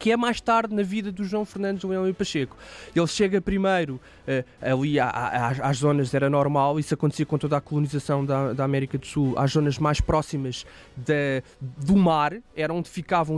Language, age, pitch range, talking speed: Portuguese, 20-39, 150-200 Hz, 175 wpm